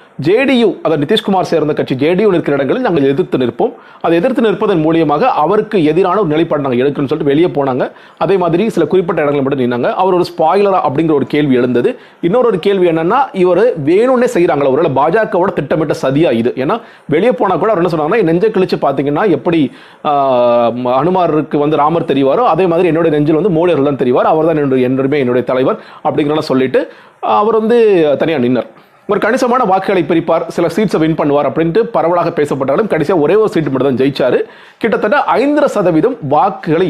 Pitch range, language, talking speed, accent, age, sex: 145-195 Hz, Tamil, 165 wpm, native, 30-49, male